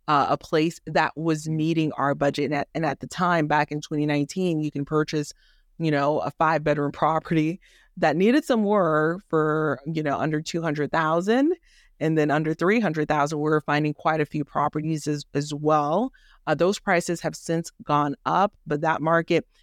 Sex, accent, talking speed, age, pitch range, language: female, American, 180 wpm, 30-49, 150-165 Hz, English